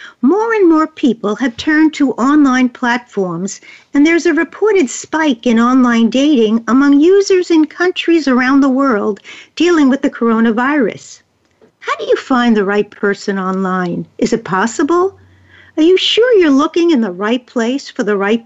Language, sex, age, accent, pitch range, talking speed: English, female, 50-69, American, 220-315 Hz, 165 wpm